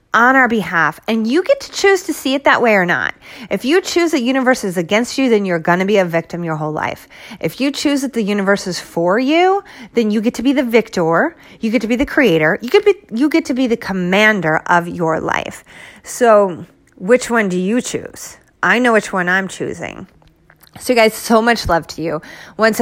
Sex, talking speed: female, 240 wpm